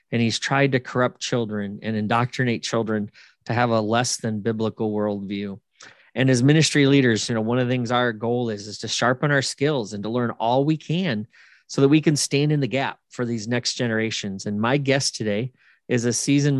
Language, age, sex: English, 30-49, male